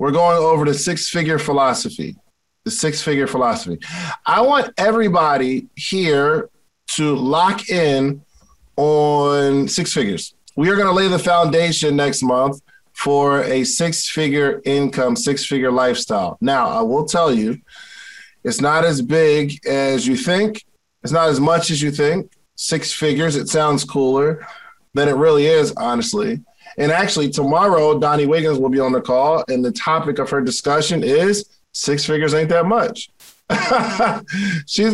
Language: English